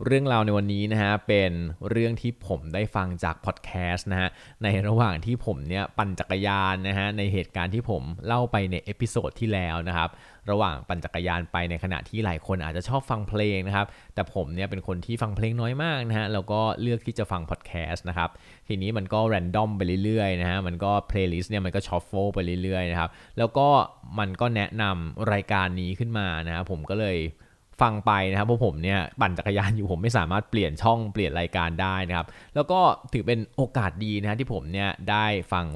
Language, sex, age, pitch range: Thai, male, 20-39, 90-110 Hz